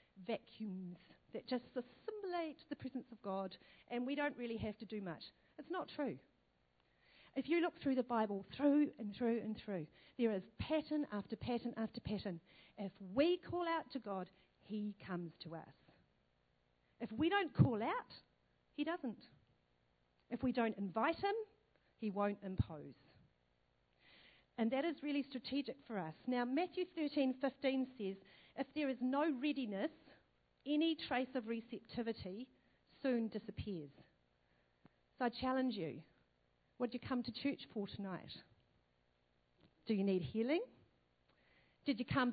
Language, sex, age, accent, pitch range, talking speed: English, female, 40-59, Australian, 190-275 Hz, 145 wpm